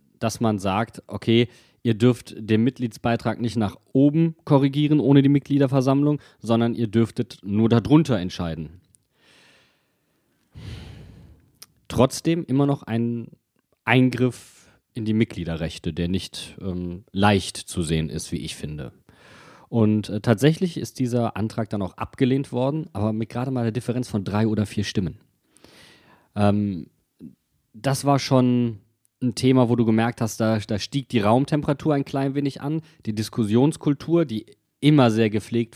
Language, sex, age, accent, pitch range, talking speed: German, male, 30-49, German, 105-135 Hz, 145 wpm